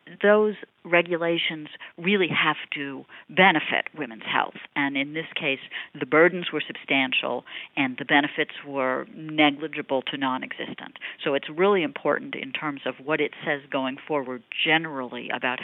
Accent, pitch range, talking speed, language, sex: American, 140-170 Hz, 140 wpm, English, female